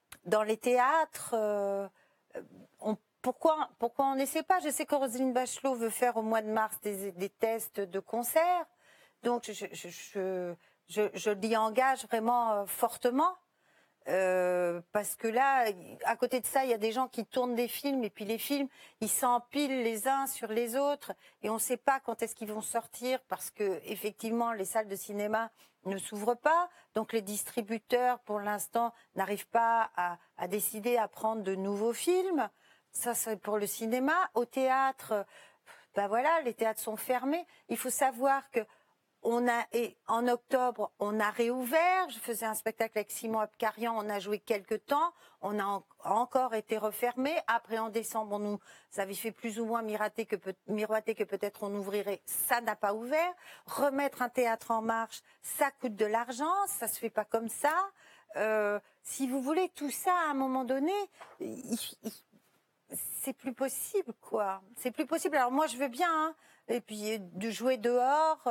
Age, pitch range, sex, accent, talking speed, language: 40-59, 210-265 Hz, female, French, 180 wpm, French